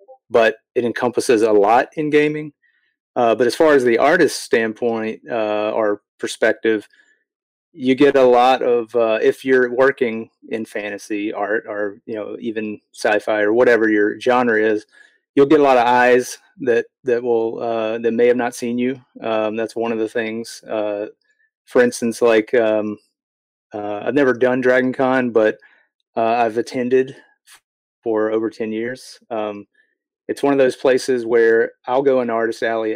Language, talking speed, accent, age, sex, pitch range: English, 170 wpm, American, 30-49, male, 110-135 Hz